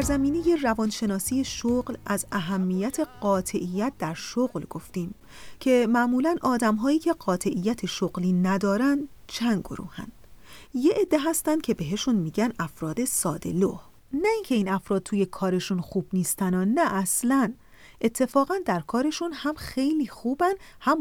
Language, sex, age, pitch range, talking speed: Persian, female, 40-59, 195-285 Hz, 130 wpm